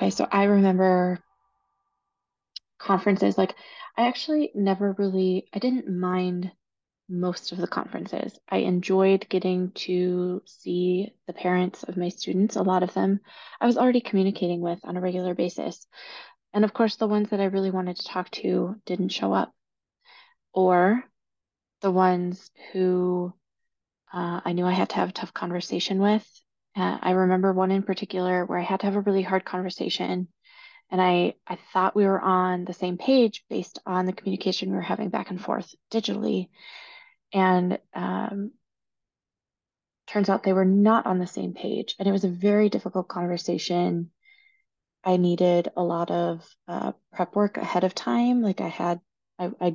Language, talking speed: English, 170 wpm